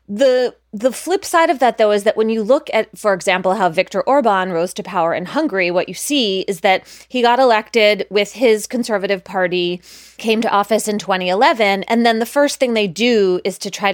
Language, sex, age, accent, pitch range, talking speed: English, female, 20-39, American, 180-230 Hz, 215 wpm